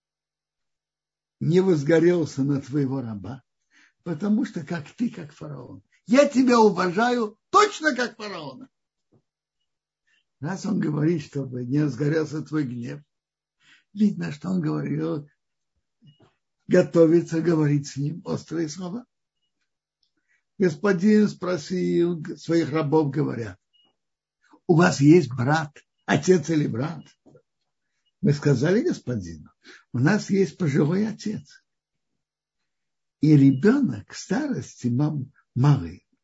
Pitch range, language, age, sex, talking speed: 145-200 Hz, Russian, 60-79, male, 100 wpm